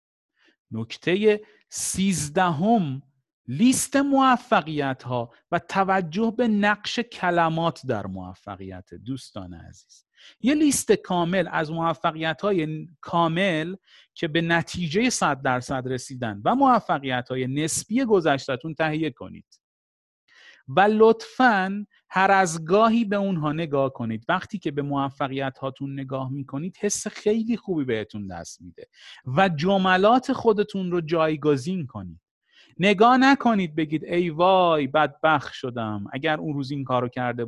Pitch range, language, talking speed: 130-195 Hz, Persian, 120 wpm